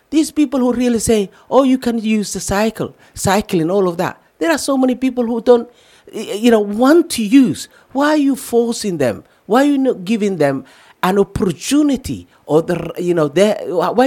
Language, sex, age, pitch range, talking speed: English, male, 50-69, 170-255 Hz, 195 wpm